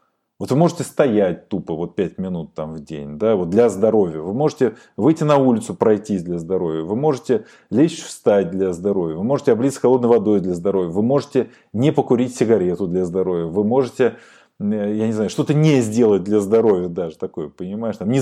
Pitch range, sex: 100-140 Hz, male